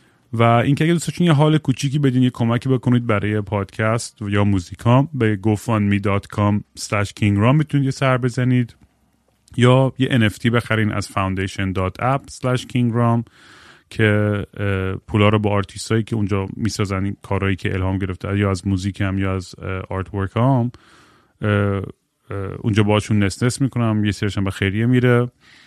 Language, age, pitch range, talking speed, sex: Persian, 30-49, 100-120 Hz, 150 wpm, male